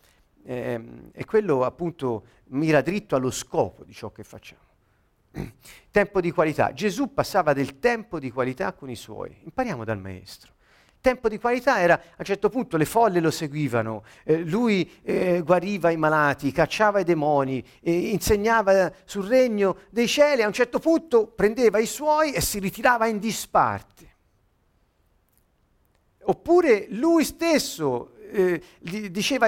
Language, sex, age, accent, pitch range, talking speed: Italian, male, 50-69, native, 165-240 Hz, 145 wpm